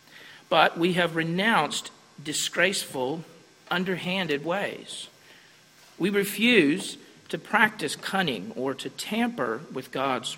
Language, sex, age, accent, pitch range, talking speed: English, male, 40-59, American, 135-195 Hz, 100 wpm